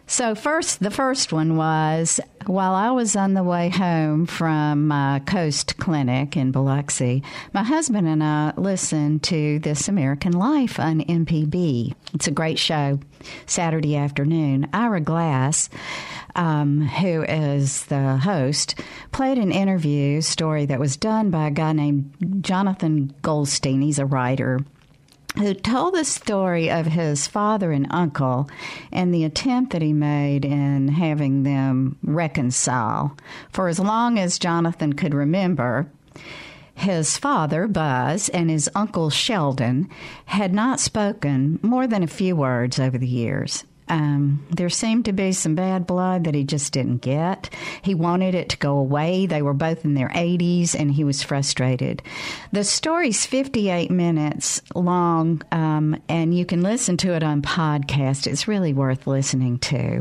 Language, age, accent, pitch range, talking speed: English, 50-69, American, 145-185 Hz, 150 wpm